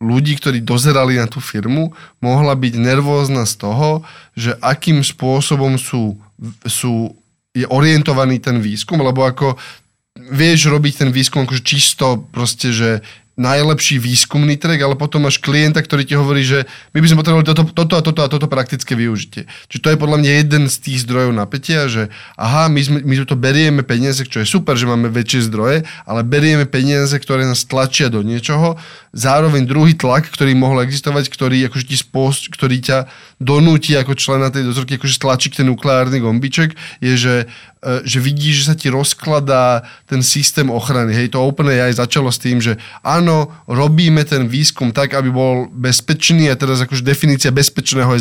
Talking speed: 165 wpm